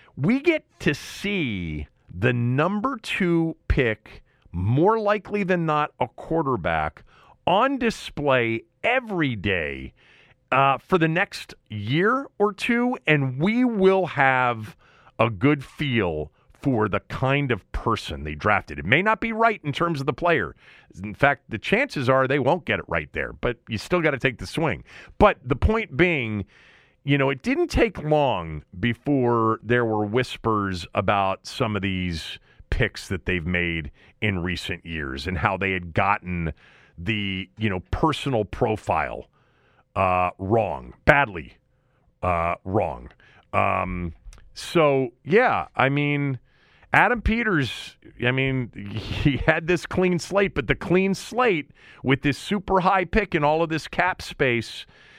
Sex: male